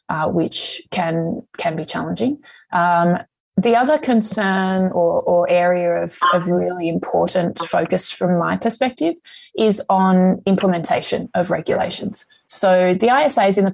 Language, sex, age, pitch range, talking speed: English, female, 20-39, 175-215 Hz, 140 wpm